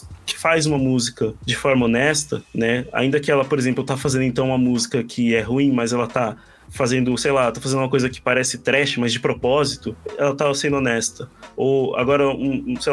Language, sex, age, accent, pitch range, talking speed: Portuguese, male, 20-39, Brazilian, 125-155 Hz, 210 wpm